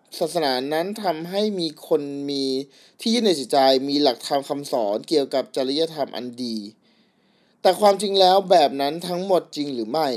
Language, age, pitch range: Thai, 20-39, 145-205 Hz